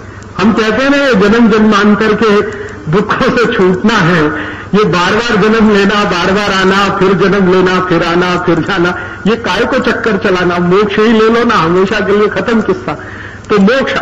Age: 50-69